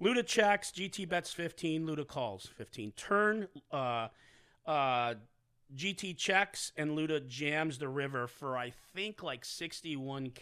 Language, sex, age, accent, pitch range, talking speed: English, male, 40-59, American, 120-165 Hz, 130 wpm